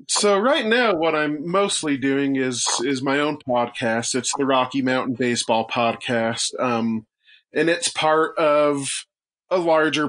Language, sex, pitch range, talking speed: English, male, 125-155 Hz, 150 wpm